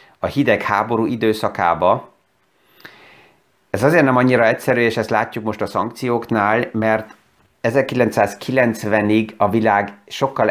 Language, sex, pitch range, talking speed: Hungarian, male, 105-125 Hz, 115 wpm